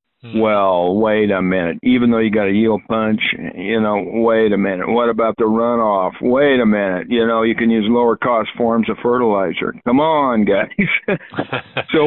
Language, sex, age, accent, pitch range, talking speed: English, male, 60-79, American, 105-125 Hz, 185 wpm